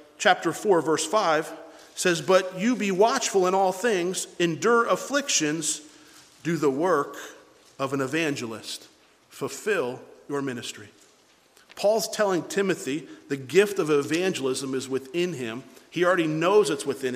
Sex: male